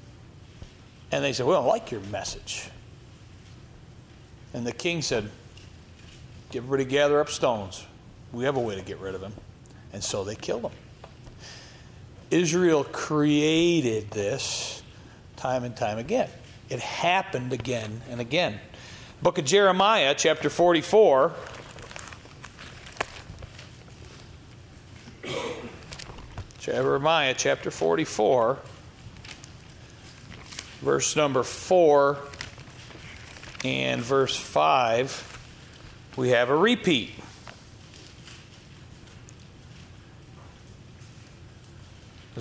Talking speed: 85 wpm